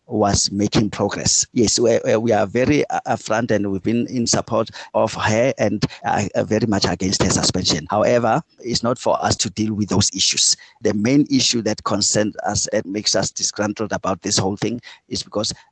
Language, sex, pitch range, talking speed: English, male, 100-110 Hz, 185 wpm